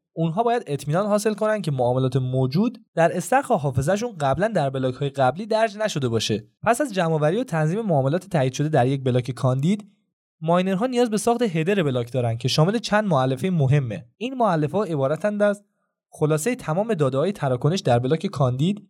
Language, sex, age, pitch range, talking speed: Persian, male, 20-39, 140-205 Hz, 175 wpm